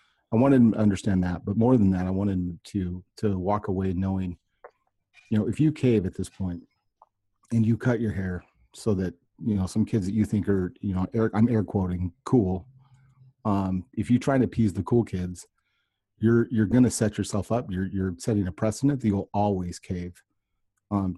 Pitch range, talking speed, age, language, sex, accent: 95-110 Hz, 205 wpm, 30-49, English, male, American